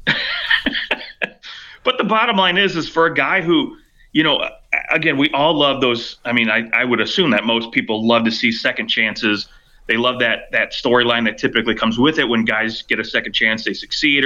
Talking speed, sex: 205 wpm, male